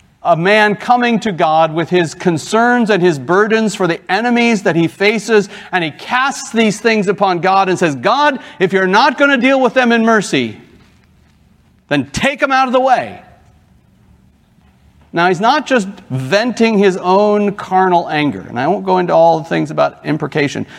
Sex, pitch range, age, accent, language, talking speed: male, 170-240 Hz, 50-69, American, English, 180 wpm